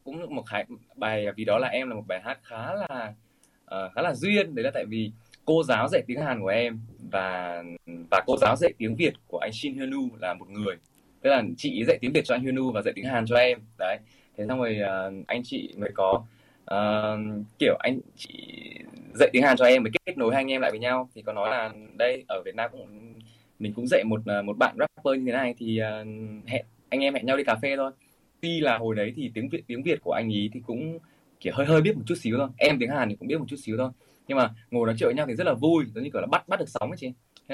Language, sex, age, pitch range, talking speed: Vietnamese, male, 20-39, 105-135 Hz, 270 wpm